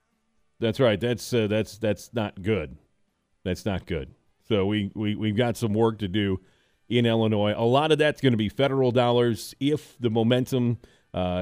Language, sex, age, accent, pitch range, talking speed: English, male, 40-59, American, 100-125 Hz, 185 wpm